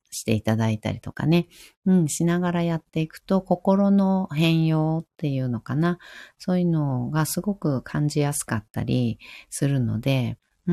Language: Japanese